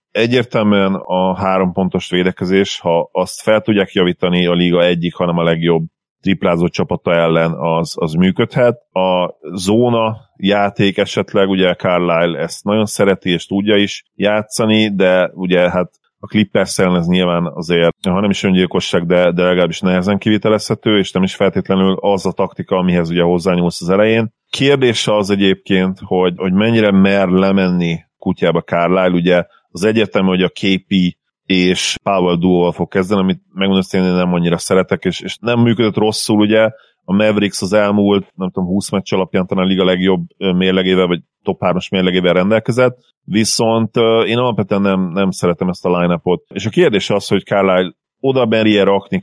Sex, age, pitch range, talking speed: male, 30-49, 90-105 Hz, 160 wpm